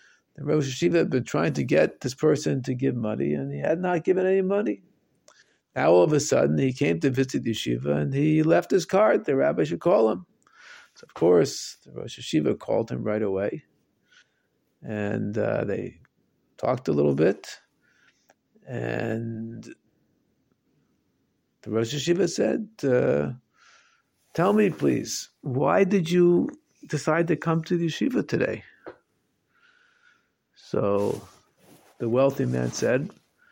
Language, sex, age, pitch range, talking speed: English, male, 50-69, 115-185 Hz, 145 wpm